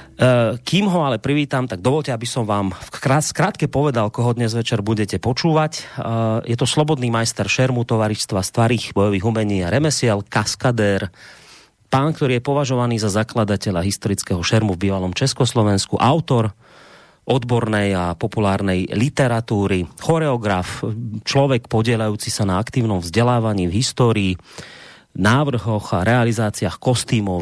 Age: 30-49